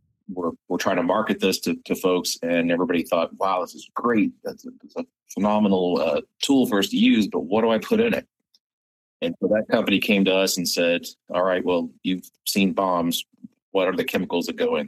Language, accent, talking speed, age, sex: English, American, 225 wpm, 40-59, male